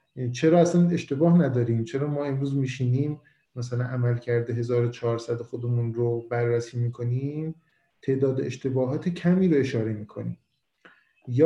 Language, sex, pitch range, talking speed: Persian, male, 120-145 Hz, 120 wpm